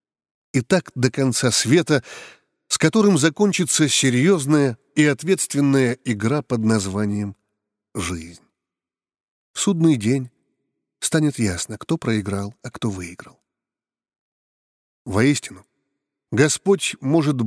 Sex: male